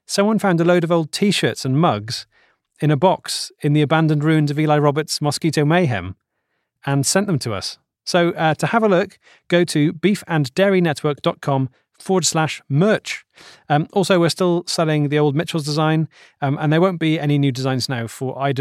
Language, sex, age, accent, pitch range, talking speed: English, male, 30-49, British, 130-170 Hz, 185 wpm